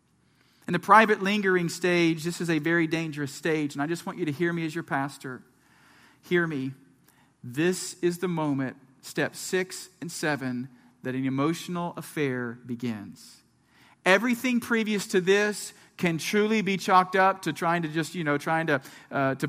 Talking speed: 170 wpm